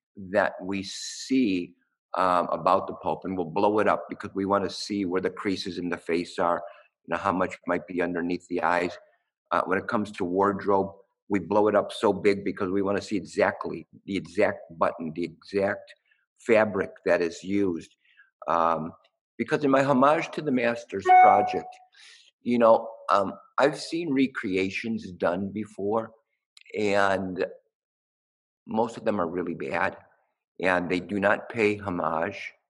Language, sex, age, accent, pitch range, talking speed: English, male, 50-69, American, 90-115 Hz, 165 wpm